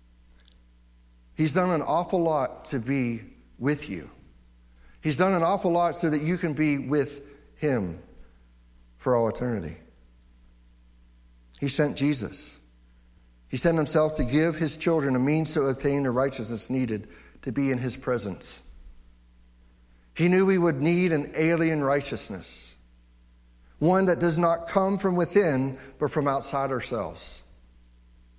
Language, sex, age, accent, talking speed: English, male, 60-79, American, 135 wpm